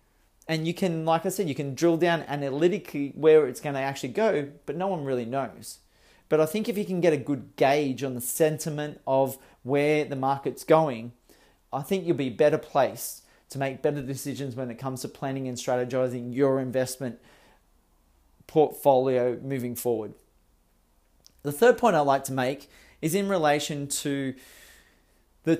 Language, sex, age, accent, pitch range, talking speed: English, male, 30-49, Australian, 130-155 Hz, 175 wpm